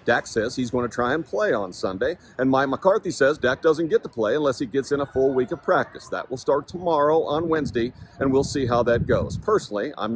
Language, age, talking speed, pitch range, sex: English, 40-59, 250 wpm, 115-145 Hz, male